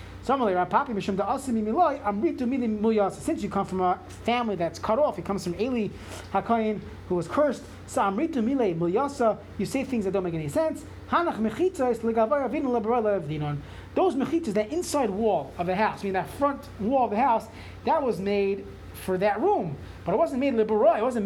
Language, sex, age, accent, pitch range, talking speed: English, male, 30-49, American, 185-255 Hz, 150 wpm